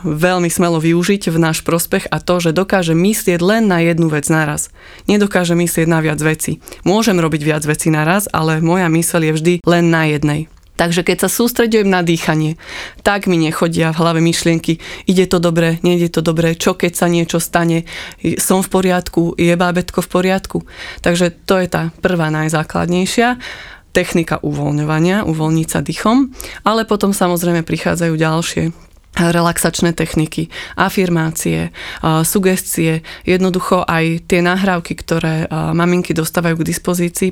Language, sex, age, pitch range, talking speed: Slovak, female, 20-39, 160-180 Hz, 150 wpm